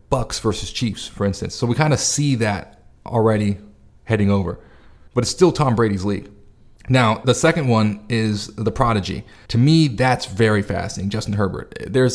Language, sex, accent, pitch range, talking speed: English, male, American, 100-115 Hz, 175 wpm